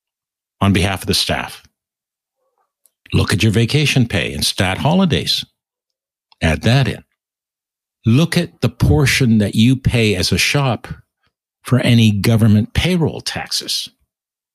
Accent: American